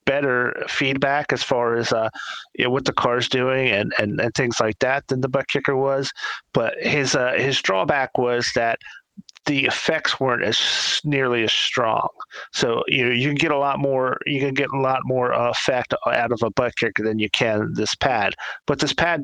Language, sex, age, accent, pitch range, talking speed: English, male, 40-59, American, 115-135 Hz, 205 wpm